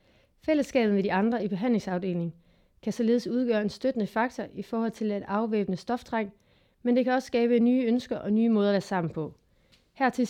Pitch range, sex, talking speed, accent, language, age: 195-240 Hz, female, 190 wpm, native, Danish, 30-49